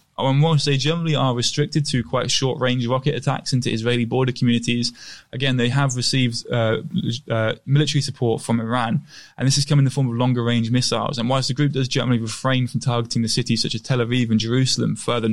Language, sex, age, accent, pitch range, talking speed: English, male, 20-39, British, 115-135 Hz, 210 wpm